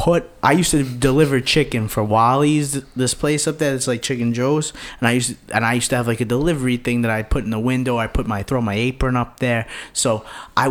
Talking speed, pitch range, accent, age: 250 wpm, 110-135 Hz, American, 30-49